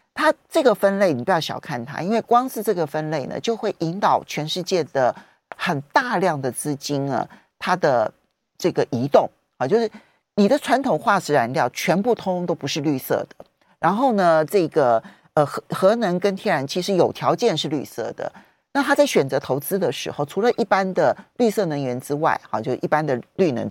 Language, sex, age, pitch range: Chinese, male, 40-59, 150-235 Hz